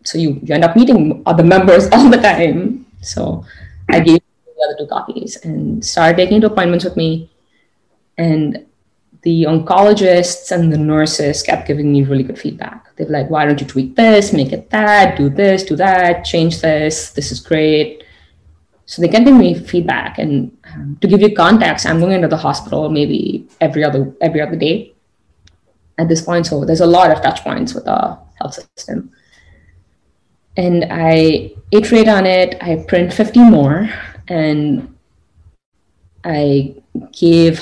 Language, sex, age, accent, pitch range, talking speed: English, female, 20-39, Indian, 140-180 Hz, 165 wpm